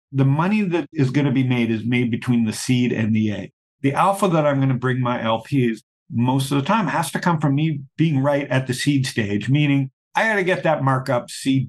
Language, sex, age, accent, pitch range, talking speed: English, male, 50-69, American, 120-155 Hz, 245 wpm